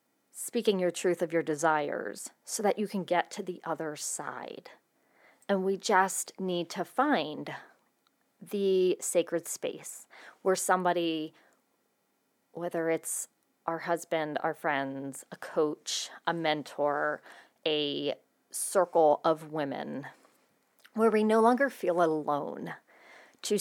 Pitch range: 165-200 Hz